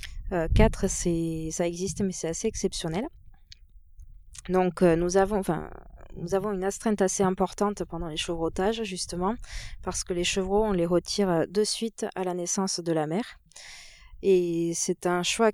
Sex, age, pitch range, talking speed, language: female, 20-39, 170-200 Hz, 155 wpm, French